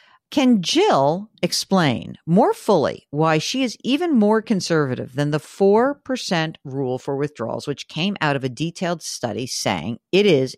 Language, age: English, 50-69